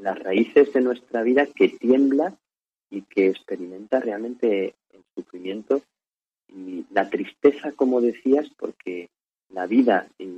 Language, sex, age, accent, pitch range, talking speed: Spanish, male, 40-59, Spanish, 100-130 Hz, 125 wpm